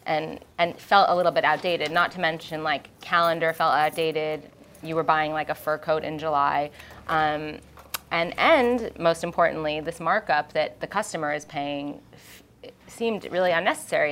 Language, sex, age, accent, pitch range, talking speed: English, female, 20-39, American, 150-175 Hz, 160 wpm